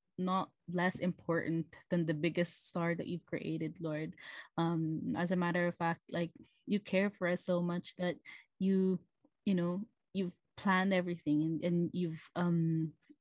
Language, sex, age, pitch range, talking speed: English, female, 20-39, 170-195 Hz, 160 wpm